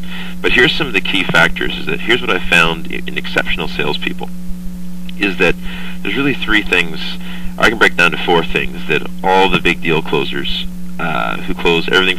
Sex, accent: male, American